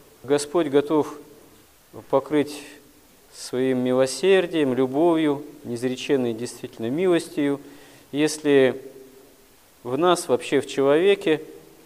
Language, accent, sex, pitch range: Russian, native, male, 125-145 Hz